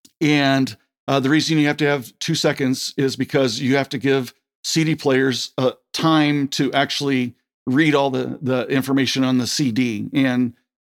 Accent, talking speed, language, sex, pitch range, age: American, 170 wpm, English, male, 125-145 Hz, 50-69